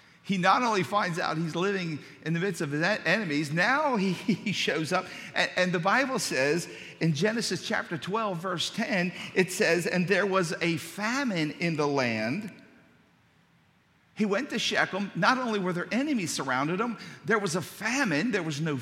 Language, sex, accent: English, male, American